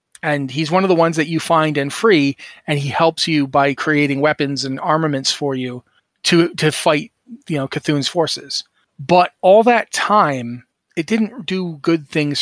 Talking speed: 185 wpm